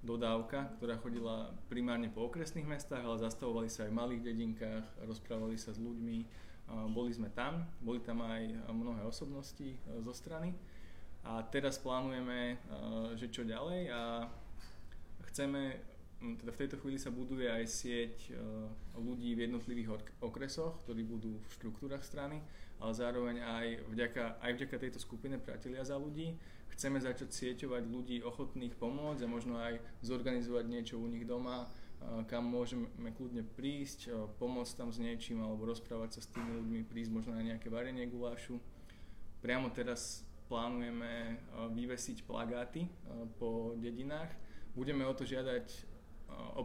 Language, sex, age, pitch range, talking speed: Slovak, male, 20-39, 115-125 Hz, 145 wpm